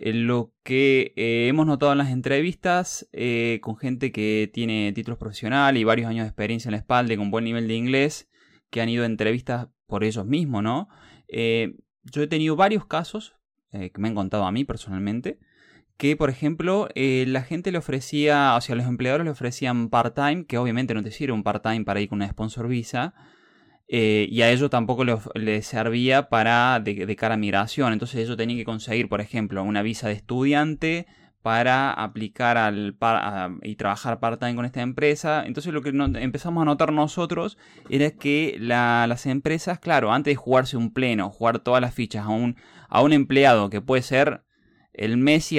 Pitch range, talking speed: 110-140 Hz, 195 wpm